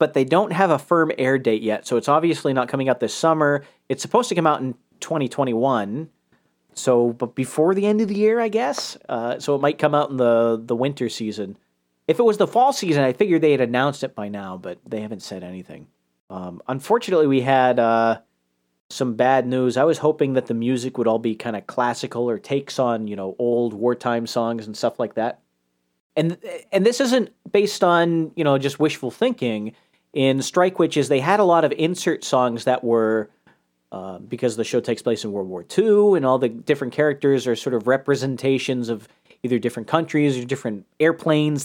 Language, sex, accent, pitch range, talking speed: English, male, American, 120-165 Hz, 210 wpm